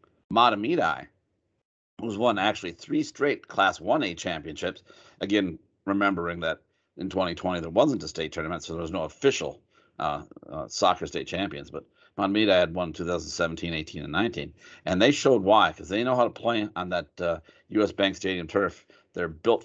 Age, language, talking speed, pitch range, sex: 50-69, English, 170 wpm, 85-105 Hz, male